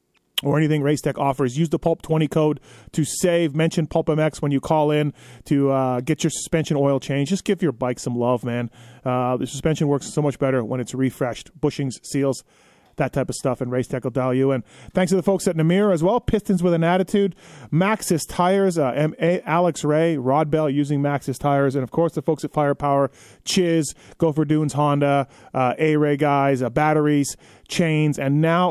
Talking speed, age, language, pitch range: 190 wpm, 30-49, English, 140-185 Hz